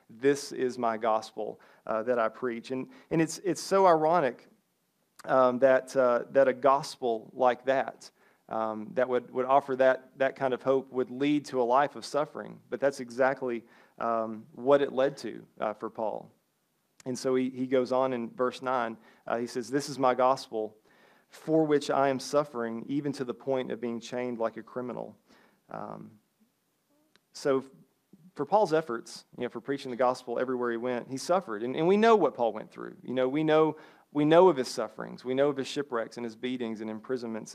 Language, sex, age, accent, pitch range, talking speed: English, male, 40-59, American, 125-150 Hz, 200 wpm